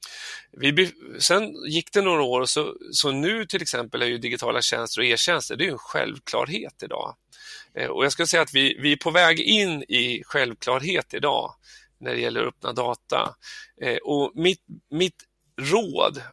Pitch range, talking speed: 130-175 Hz, 165 wpm